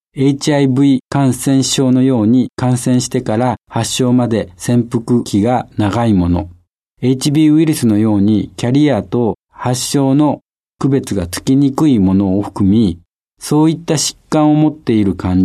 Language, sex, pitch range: Japanese, male, 100-135 Hz